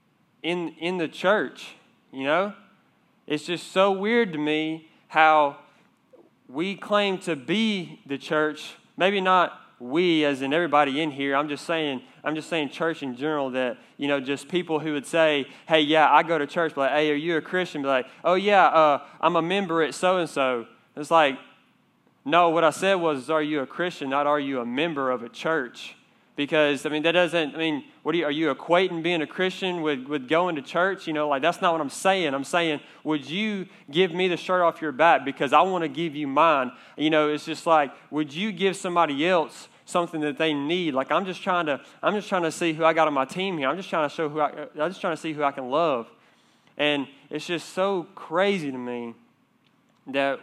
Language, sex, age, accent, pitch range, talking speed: English, male, 20-39, American, 145-175 Hz, 225 wpm